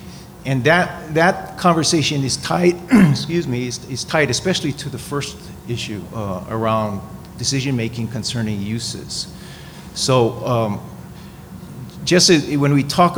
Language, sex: English, male